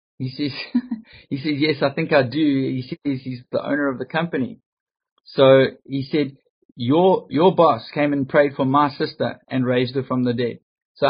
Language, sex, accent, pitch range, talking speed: English, male, Australian, 125-145 Hz, 195 wpm